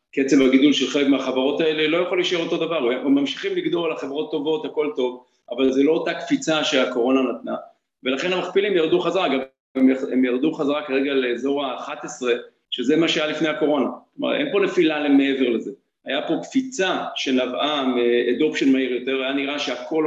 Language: Hebrew